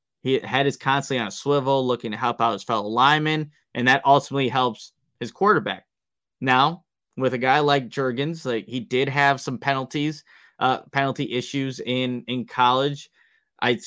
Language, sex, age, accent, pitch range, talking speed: English, male, 20-39, American, 125-150 Hz, 170 wpm